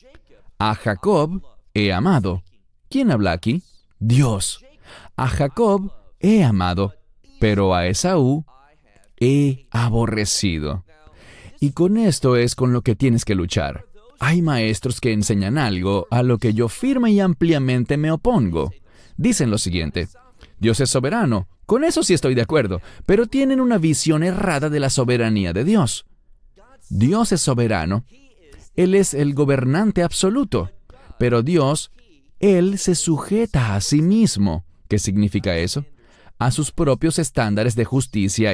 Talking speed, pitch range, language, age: 135 wpm, 110-170 Hz, English, 40-59